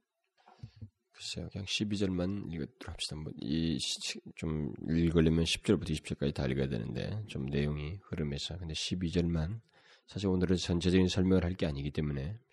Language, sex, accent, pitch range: Korean, male, native, 80-105 Hz